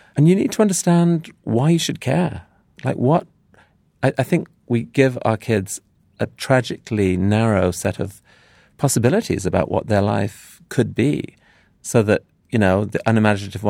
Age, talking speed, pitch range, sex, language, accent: 40-59, 160 wpm, 95-125 Hz, male, English, British